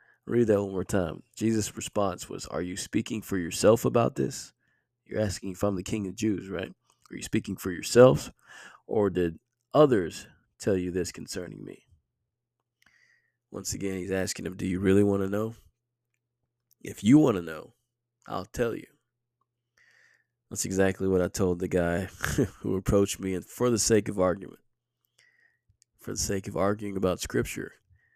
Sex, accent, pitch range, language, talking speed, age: male, American, 95-120 Hz, English, 170 wpm, 20-39